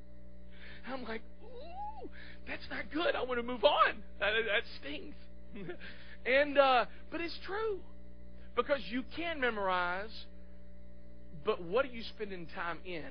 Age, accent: 50-69, American